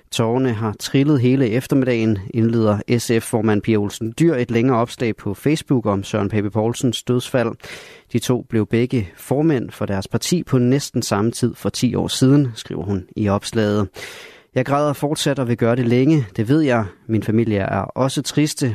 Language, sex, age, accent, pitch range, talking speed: Danish, male, 30-49, native, 105-130 Hz, 180 wpm